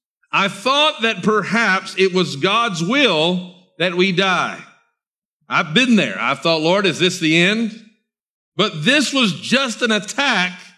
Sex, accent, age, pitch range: male, American, 50-69, 155-210 Hz